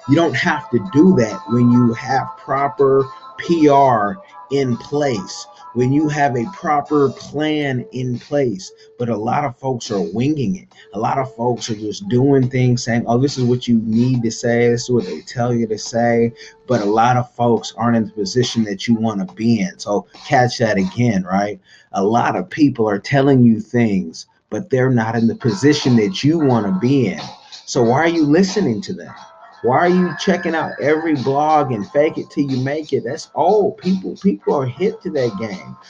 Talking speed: 205 wpm